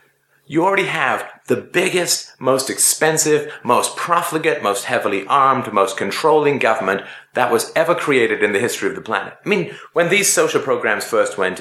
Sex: male